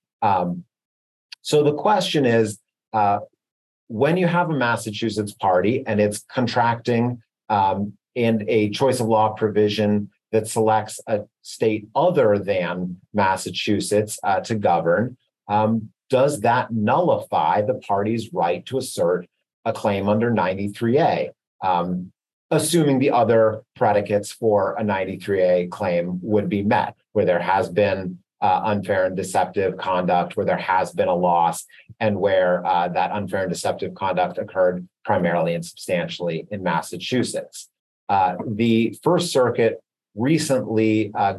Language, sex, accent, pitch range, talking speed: English, male, American, 100-115 Hz, 135 wpm